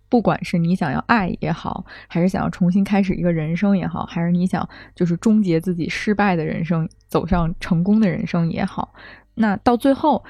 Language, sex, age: Chinese, female, 20-39